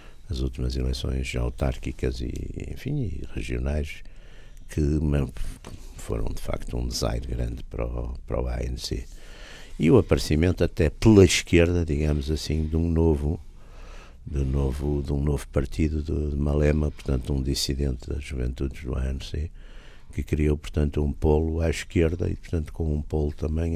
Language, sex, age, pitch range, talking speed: Portuguese, male, 60-79, 70-85 Hz, 150 wpm